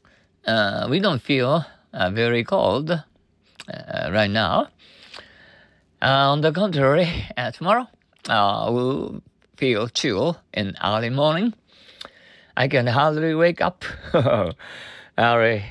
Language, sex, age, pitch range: Japanese, male, 50-69, 95-130 Hz